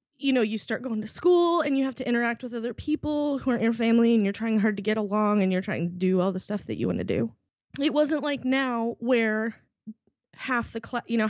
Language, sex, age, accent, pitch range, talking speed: English, female, 20-39, American, 190-235 Hz, 255 wpm